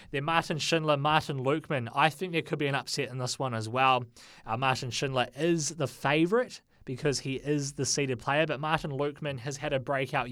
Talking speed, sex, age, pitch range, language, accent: 210 wpm, male, 20-39, 120-145 Hz, English, Australian